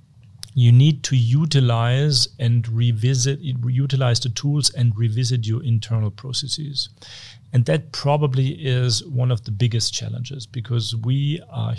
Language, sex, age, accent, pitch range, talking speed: English, male, 40-59, German, 115-130 Hz, 130 wpm